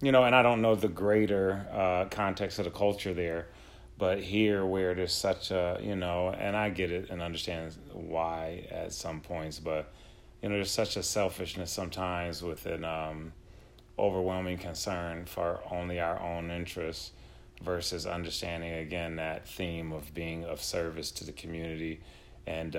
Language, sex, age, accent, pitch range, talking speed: English, male, 30-49, American, 85-100 Hz, 165 wpm